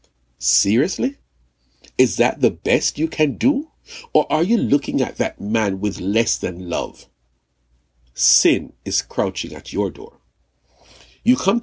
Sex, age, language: male, 60-79, English